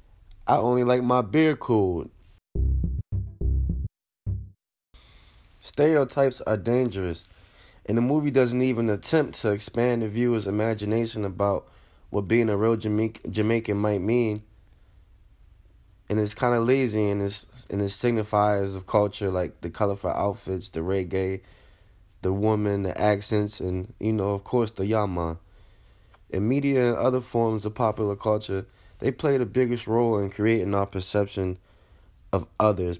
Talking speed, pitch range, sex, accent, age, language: 140 wpm, 95-110 Hz, male, American, 20-39, English